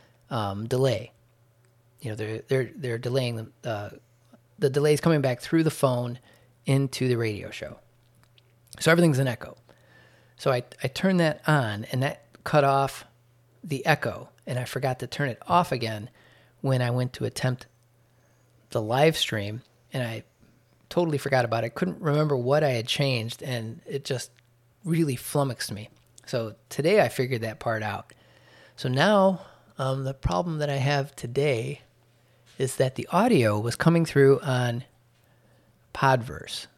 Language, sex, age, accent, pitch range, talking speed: English, male, 30-49, American, 115-140 Hz, 160 wpm